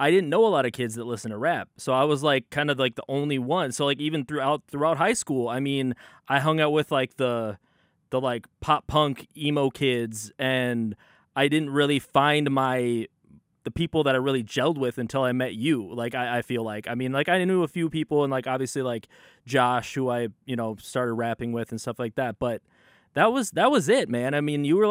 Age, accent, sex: 20-39, American, male